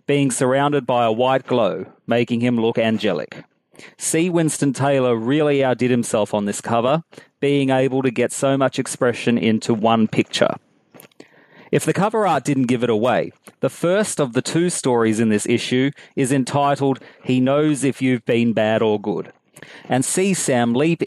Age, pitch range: 30-49, 115-140 Hz